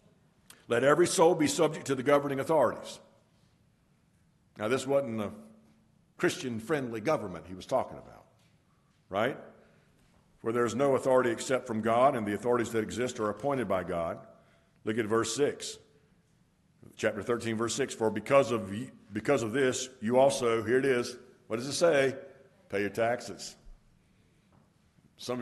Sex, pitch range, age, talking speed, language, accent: male, 110-135 Hz, 60-79, 155 wpm, English, American